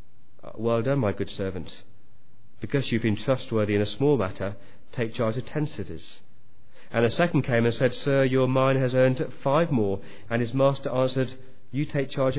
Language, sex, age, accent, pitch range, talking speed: English, male, 40-59, British, 115-140 Hz, 185 wpm